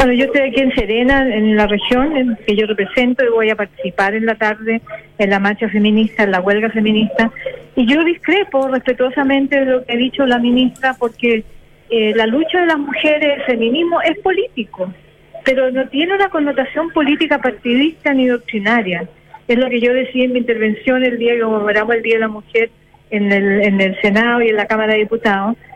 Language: Spanish